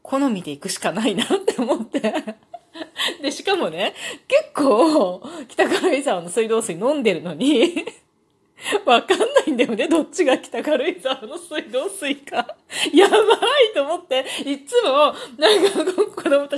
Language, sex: Japanese, female